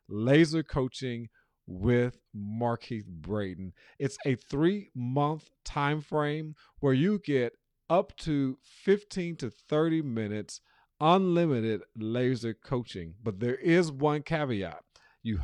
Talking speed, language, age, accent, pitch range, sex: 110 wpm, English, 40-59, American, 110-145 Hz, male